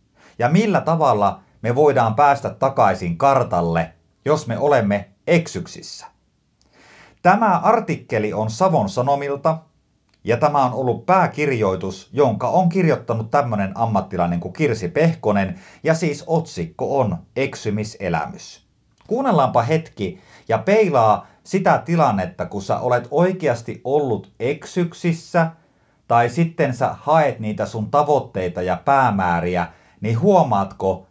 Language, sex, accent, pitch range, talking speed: Finnish, male, native, 105-165 Hz, 110 wpm